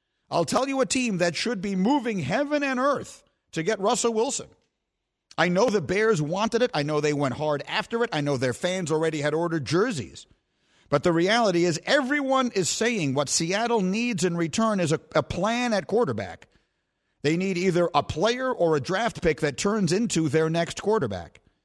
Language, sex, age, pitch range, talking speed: English, male, 50-69, 160-230 Hz, 195 wpm